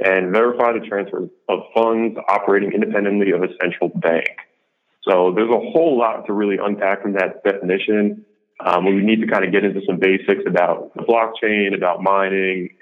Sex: male